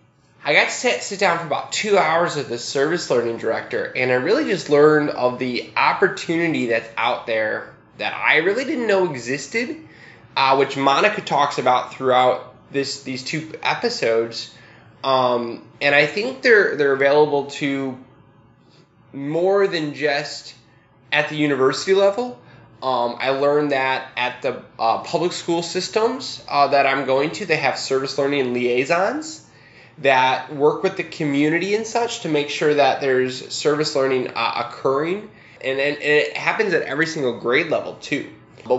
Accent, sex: American, male